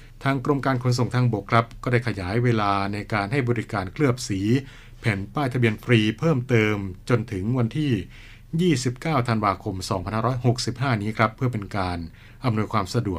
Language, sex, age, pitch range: Thai, male, 60-79, 105-125 Hz